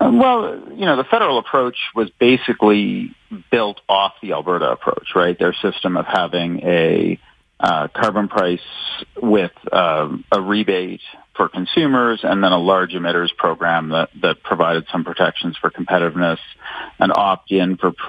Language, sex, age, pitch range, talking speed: English, male, 40-59, 85-105 Hz, 145 wpm